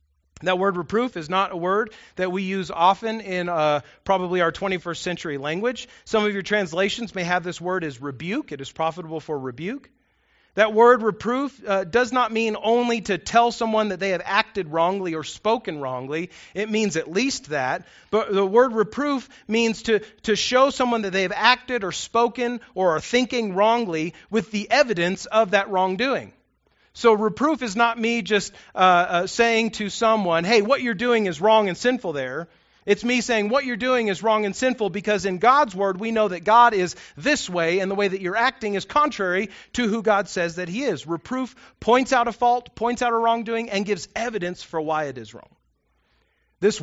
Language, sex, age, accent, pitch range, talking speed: English, male, 40-59, American, 180-230 Hz, 200 wpm